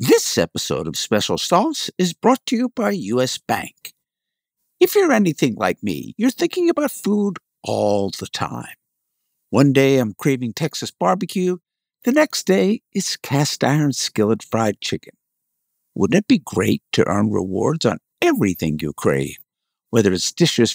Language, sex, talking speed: English, male, 155 wpm